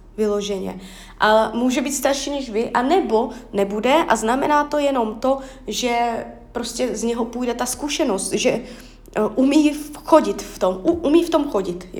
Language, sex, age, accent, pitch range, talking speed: Czech, female, 20-39, native, 225-270 Hz, 155 wpm